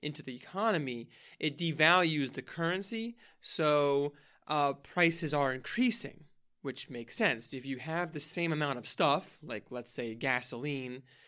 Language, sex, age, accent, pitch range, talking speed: English, male, 20-39, American, 130-155 Hz, 145 wpm